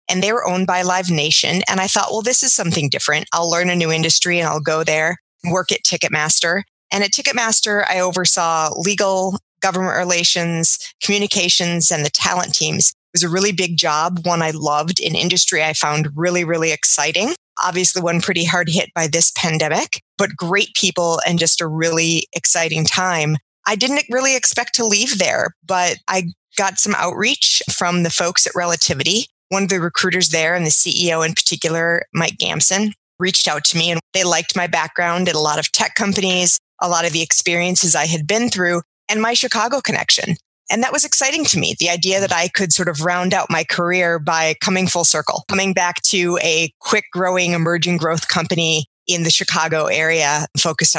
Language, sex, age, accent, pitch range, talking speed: English, female, 20-39, American, 165-195 Hz, 195 wpm